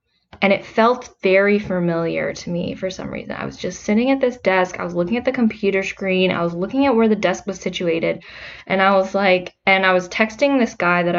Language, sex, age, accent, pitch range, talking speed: English, female, 10-29, American, 175-215 Hz, 235 wpm